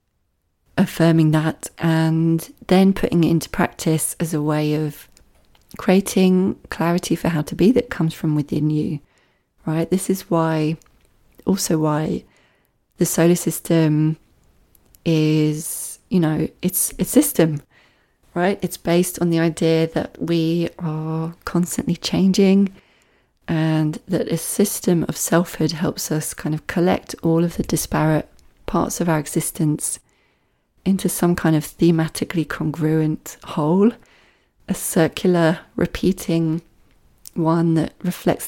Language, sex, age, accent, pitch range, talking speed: English, female, 30-49, British, 155-180 Hz, 125 wpm